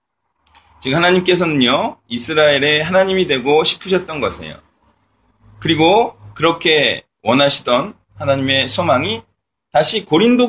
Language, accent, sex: Korean, native, male